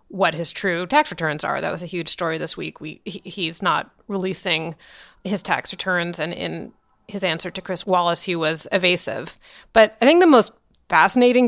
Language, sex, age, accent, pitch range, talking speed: English, female, 30-49, American, 175-205 Hz, 190 wpm